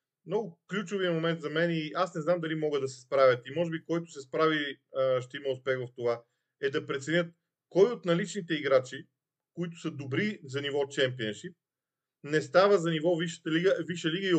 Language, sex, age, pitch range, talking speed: Bulgarian, male, 40-59, 140-175 Hz, 195 wpm